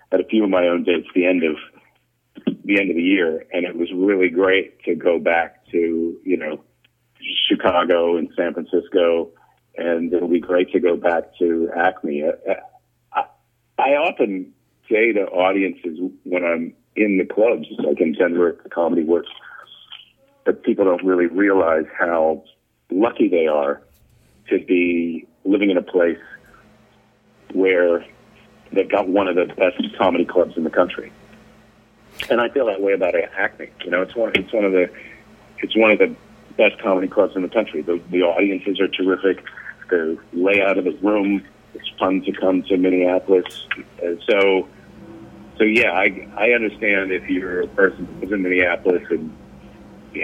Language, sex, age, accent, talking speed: English, male, 50-69, American, 165 wpm